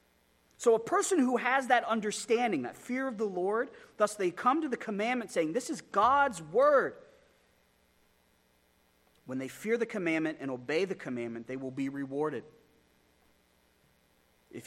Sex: male